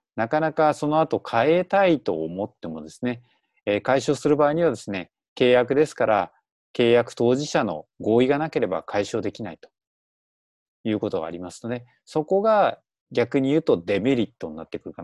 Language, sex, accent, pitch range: Japanese, male, native, 110-165 Hz